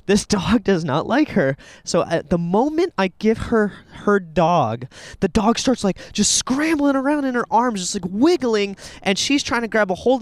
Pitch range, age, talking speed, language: 170-245 Hz, 20-39, 205 wpm, English